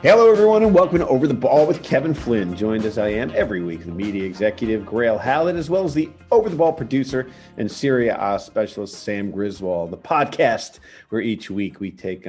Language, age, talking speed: English, 40-59, 210 wpm